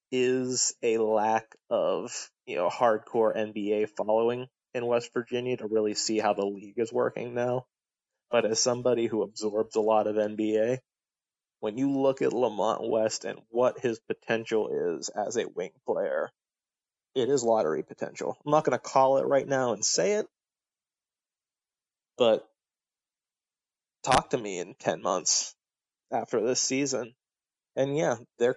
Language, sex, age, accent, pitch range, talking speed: English, male, 20-39, American, 110-135 Hz, 155 wpm